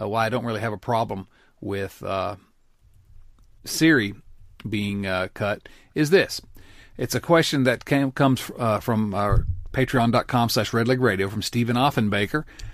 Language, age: English, 40-59